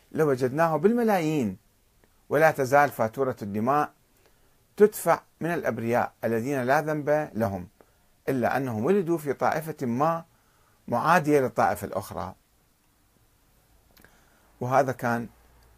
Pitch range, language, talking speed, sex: 110-170 Hz, Arabic, 95 wpm, male